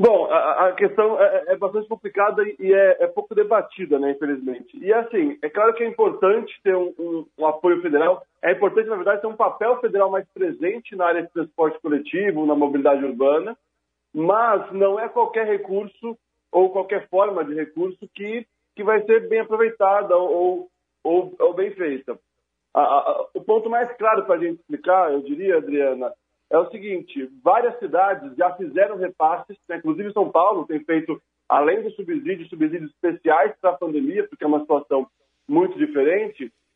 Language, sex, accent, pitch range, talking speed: Portuguese, male, Brazilian, 170-235 Hz, 170 wpm